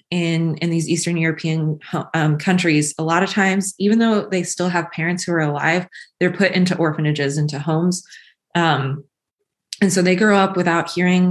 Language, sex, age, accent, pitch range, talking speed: English, female, 20-39, American, 155-190 Hz, 180 wpm